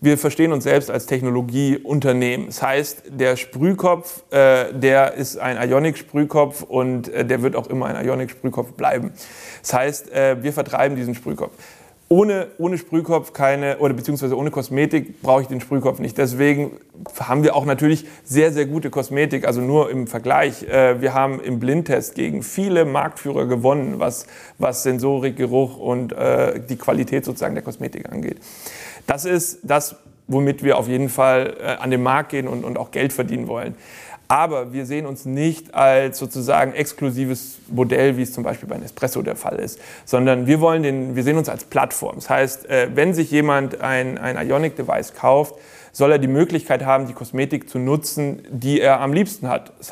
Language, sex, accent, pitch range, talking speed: German, male, German, 130-150 Hz, 180 wpm